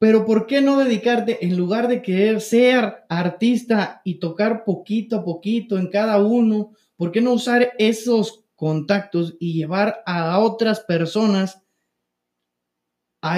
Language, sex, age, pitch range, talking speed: Spanish, male, 30-49, 165-220 Hz, 140 wpm